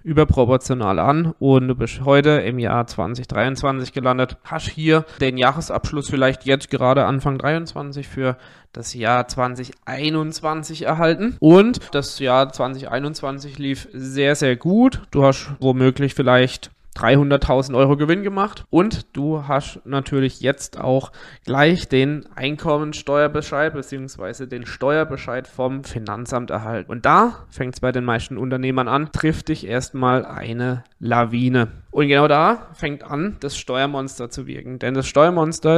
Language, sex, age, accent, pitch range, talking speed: German, male, 20-39, German, 125-150 Hz, 135 wpm